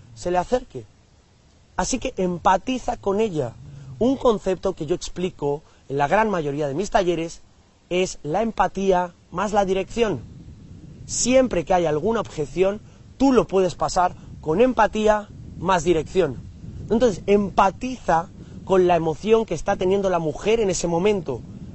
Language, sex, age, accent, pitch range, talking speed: Spanish, male, 30-49, Spanish, 150-205 Hz, 145 wpm